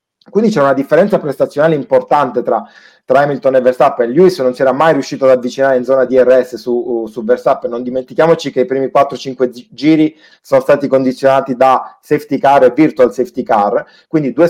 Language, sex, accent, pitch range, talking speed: Italian, male, native, 130-170 Hz, 180 wpm